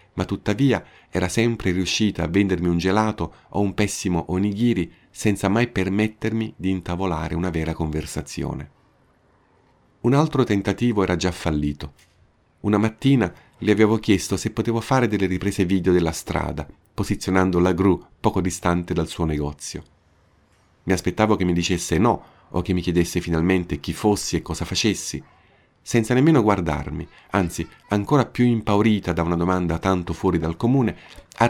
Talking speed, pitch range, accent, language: 150 wpm, 85-110 Hz, native, Italian